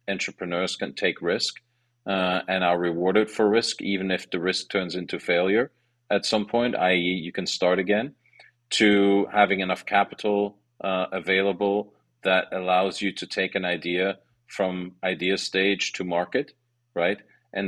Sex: male